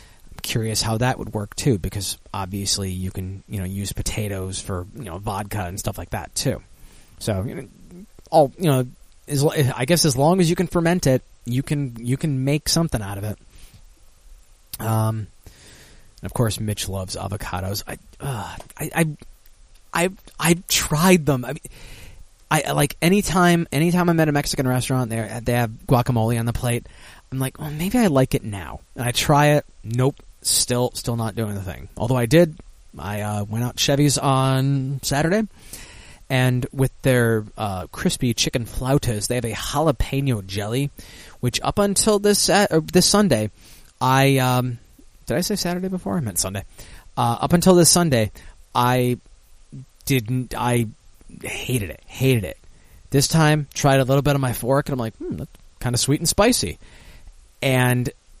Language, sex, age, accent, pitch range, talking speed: English, male, 20-39, American, 105-145 Hz, 175 wpm